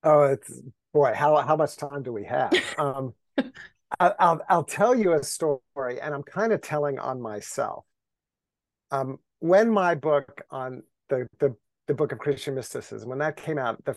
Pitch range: 135-170 Hz